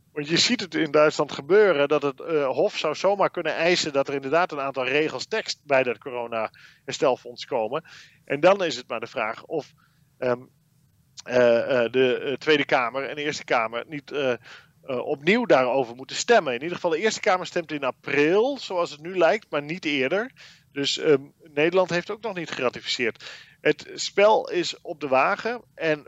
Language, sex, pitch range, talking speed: Dutch, male, 140-180 Hz, 185 wpm